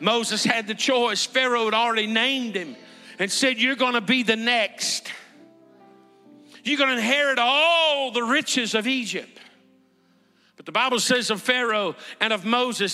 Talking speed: 160 wpm